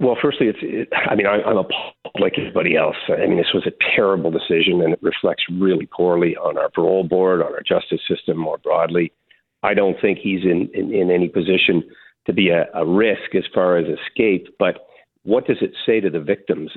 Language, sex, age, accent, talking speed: English, male, 50-69, American, 215 wpm